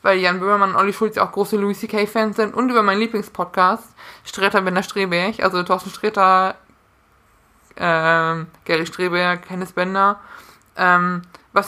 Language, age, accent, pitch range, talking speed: German, 20-39, German, 185-220 Hz, 155 wpm